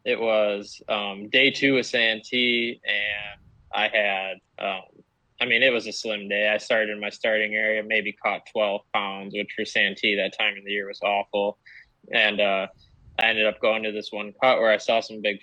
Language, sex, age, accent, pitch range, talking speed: English, male, 20-39, American, 100-115 Hz, 205 wpm